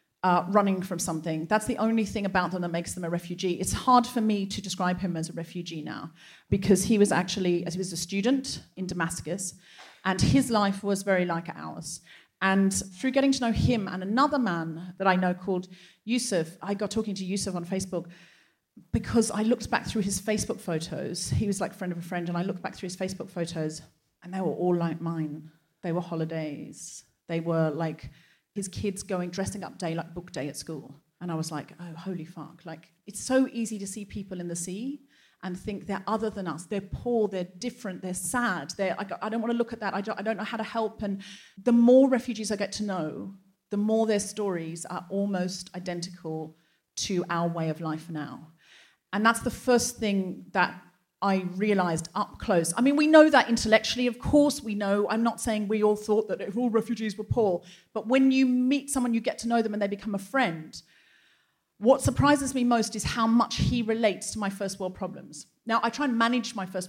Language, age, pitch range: English, 40-59, 175-220 Hz